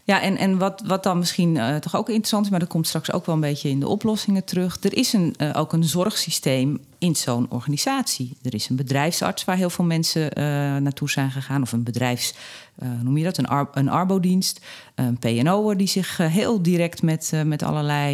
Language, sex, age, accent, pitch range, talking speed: Dutch, female, 40-59, Dutch, 135-180 Hz, 220 wpm